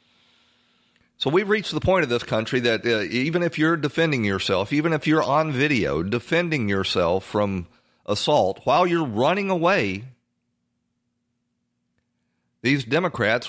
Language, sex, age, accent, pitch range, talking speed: English, male, 40-59, American, 95-125 Hz, 135 wpm